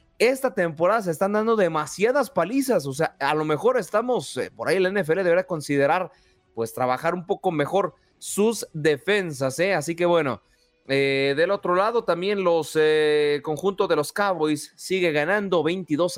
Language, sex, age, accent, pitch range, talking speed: Spanish, male, 30-49, Mexican, 140-185 Hz, 165 wpm